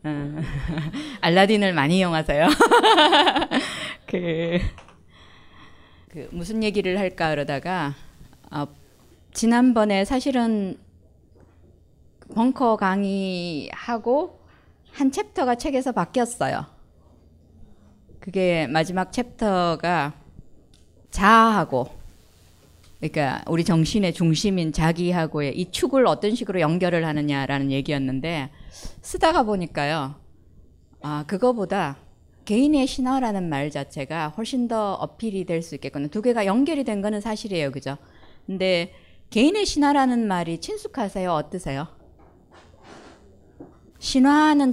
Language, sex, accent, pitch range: Korean, female, native, 145-230 Hz